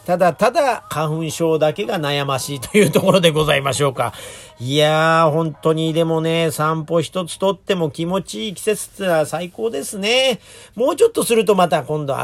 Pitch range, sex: 135-180 Hz, male